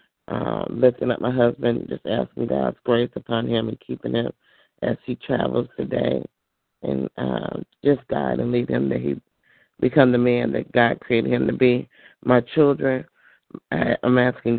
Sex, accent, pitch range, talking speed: male, American, 115-125 Hz, 165 wpm